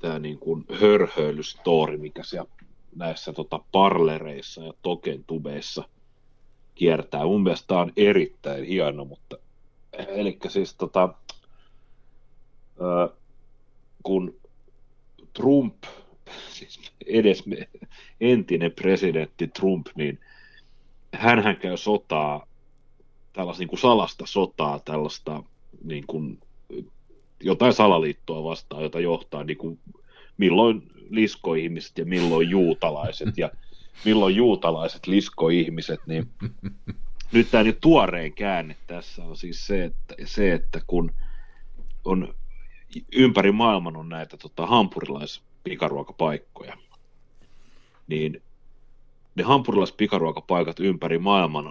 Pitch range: 80-115 Hz